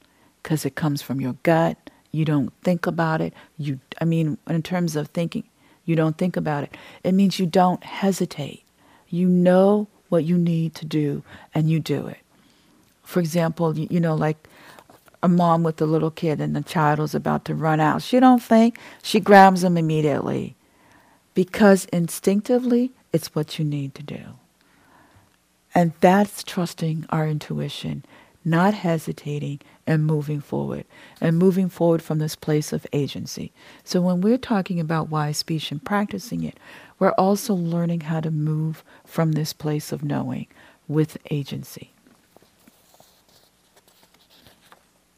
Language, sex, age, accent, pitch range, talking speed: English, female, 50-69, American, 155-185 Hz, 155 wpm